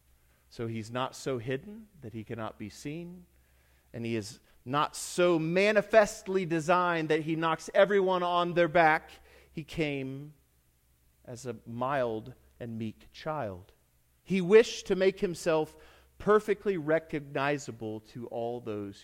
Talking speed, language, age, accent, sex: 130 wpm, English, 40-59, American, male